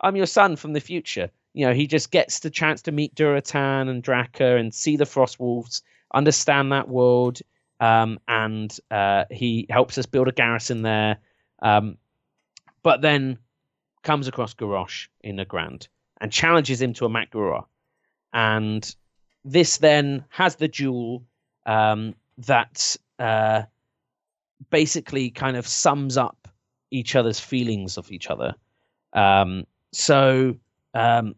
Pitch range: 110-140 Hz